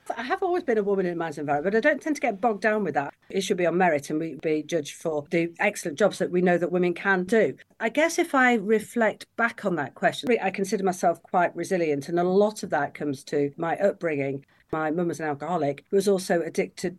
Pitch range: 165-215 Hz